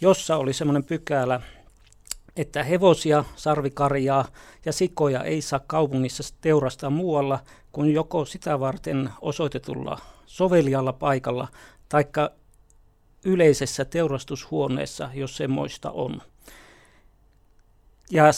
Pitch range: 135-155 Hz